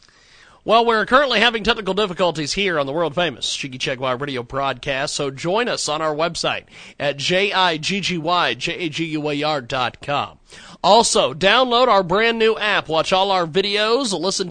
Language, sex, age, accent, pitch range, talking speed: English, male, 40-59, American, 145-195 Hz, 145 wpm